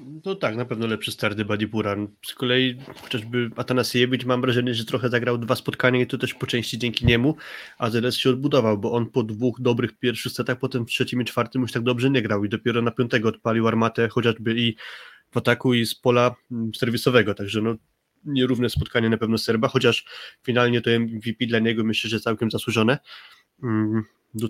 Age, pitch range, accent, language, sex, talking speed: 20-39, 115-125 Hz, native, Polish, male, 190 wpm